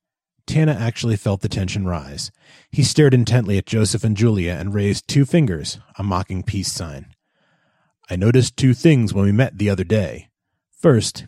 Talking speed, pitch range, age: 170 wpm, 95-120 Hz, 30-49